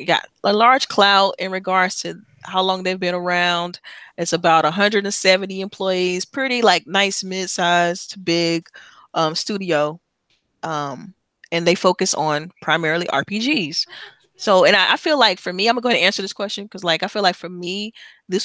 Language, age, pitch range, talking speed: English, 20-39, 160-195 Hz, 170 wpm